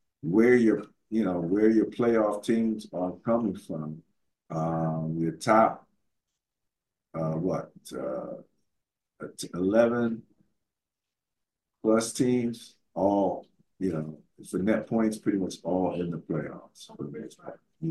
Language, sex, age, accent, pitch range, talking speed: English, male, 50-69, American, 90-115 Hz, 110 wpm